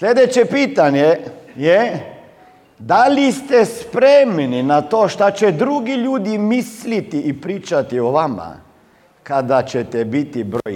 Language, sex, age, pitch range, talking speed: Croatian, male, 50-69, 135-205 Hz, 125 wpm